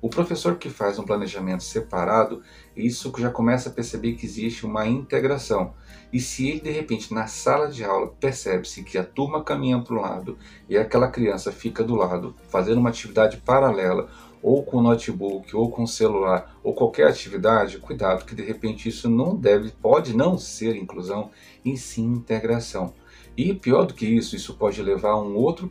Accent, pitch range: Brazilian, 100-120 Hz